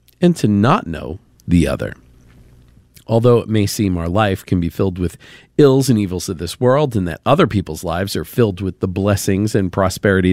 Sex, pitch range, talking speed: male, 90-120 Hz, 200 wpm